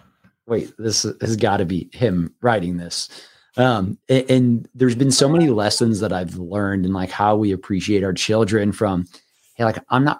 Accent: American